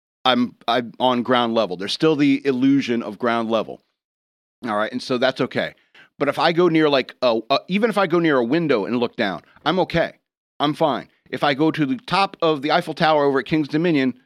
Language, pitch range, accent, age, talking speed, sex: English, 130-165 Hz, American, 40-59, 225 wpm, male